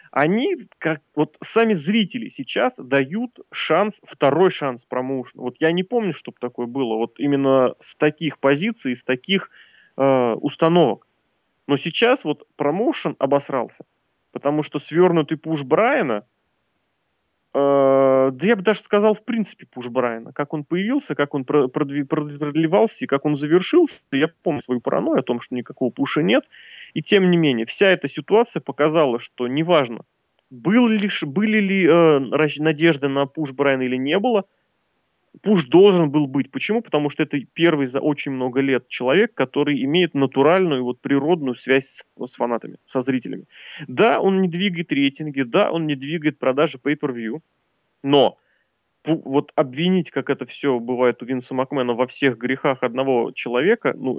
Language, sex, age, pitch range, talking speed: Russian, male, 30-49, 130-170 Hz, 155 wpm